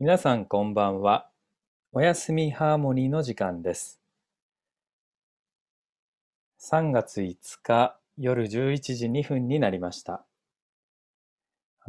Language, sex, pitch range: Japanese, male, 95-125 Hz